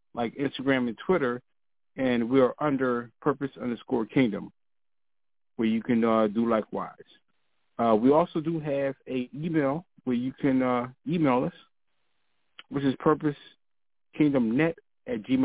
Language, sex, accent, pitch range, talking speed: English, male, American, 120-150 Hz, 130 wpm